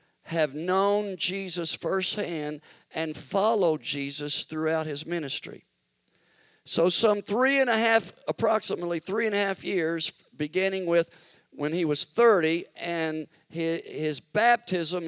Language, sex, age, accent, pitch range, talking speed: English, male, 50-69, American, 150-195 Hz, 125 wpm